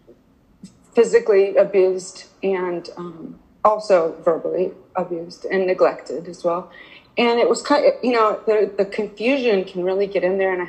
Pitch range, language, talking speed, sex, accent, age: 180-205 Hz, English, 155 wpm, female, American, 30-49